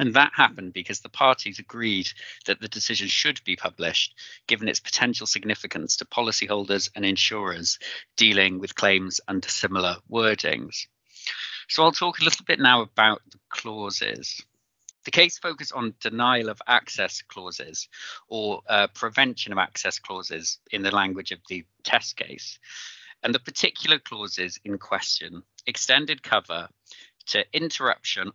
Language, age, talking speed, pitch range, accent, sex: English, 40-59, 145 wpm, 95-125 Hz, British, male